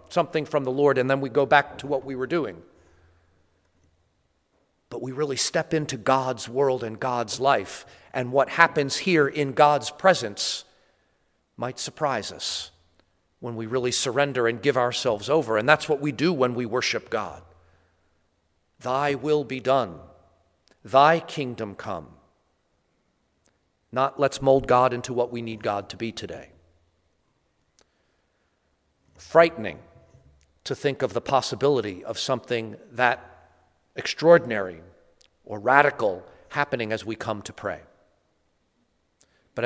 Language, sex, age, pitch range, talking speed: English, male, 50-69, 90-140 Hz, 135 wpm